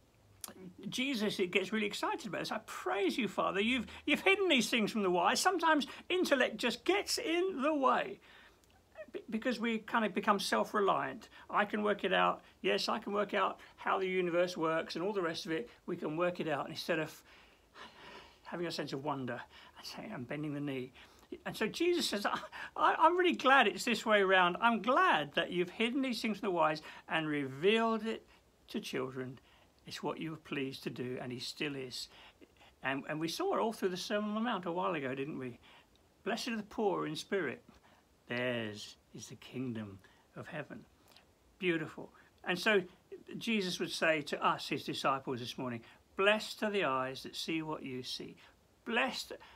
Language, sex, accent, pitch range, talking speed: English, male, British, 155-230 Hz, 195 wpm